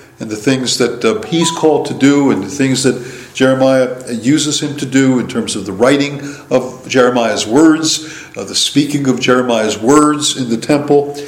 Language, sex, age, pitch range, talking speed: English, male, 50-69, 120-150 Hz, 185 wpm